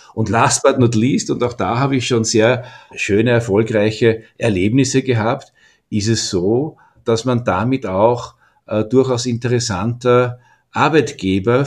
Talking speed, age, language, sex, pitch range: 140 wpm, 50-69, German, male, 105-125 Hz